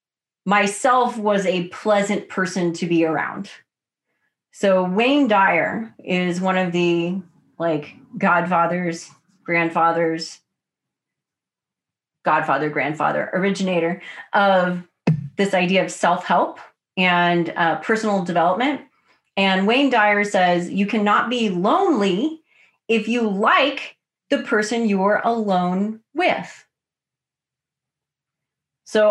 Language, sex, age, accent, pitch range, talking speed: English, female, 30-49, American, 180-240 Hz, 95 wpm